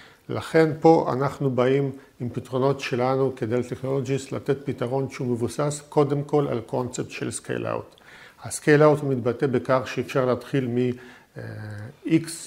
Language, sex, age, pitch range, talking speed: Hebrew, male, 50-69, 125-145 Hz, 120 wpm